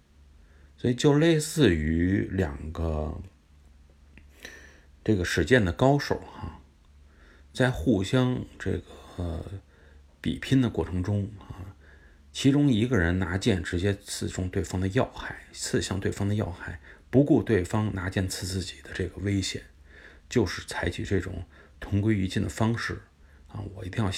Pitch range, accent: 75-100 Hz, native